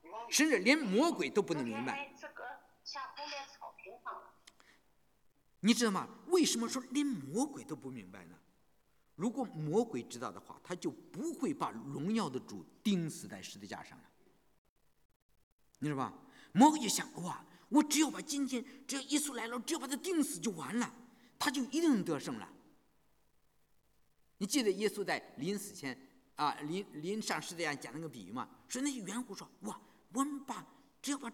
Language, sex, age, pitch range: English, male, 50-69, 205-290 Hz